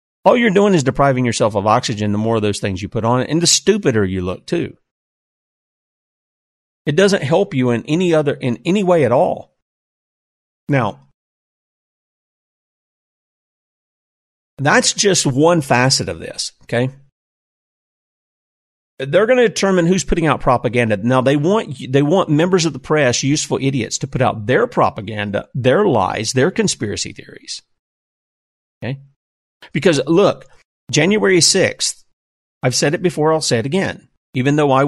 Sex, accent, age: male, American, 40-59